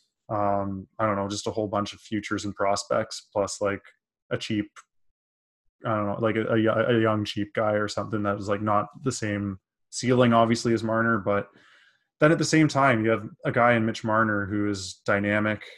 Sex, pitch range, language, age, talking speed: male, 105-115 Hz, English, 20-39, 205 wpm